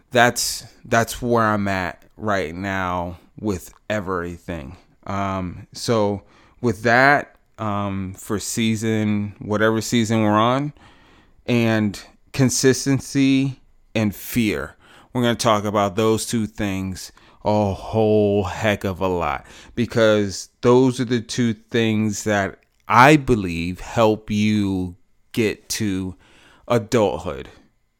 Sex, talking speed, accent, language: male, 110 wpm, American, English